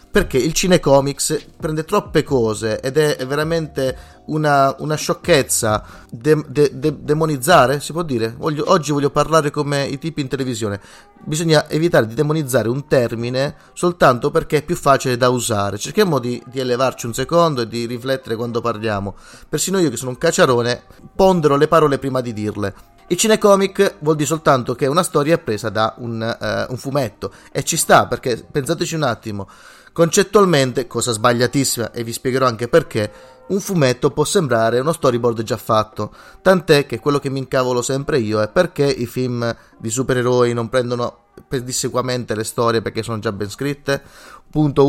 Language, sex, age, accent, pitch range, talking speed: Italian, male, 30-49, native, 120-155 Hz, 165 wpm